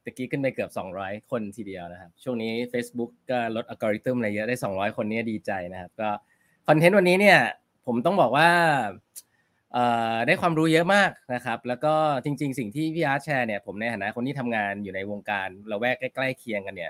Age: 20-39